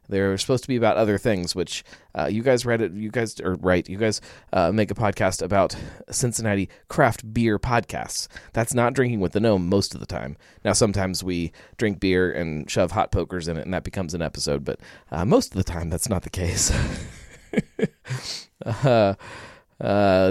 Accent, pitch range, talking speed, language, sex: American, 90-115 Hz, 190 wpm, English, male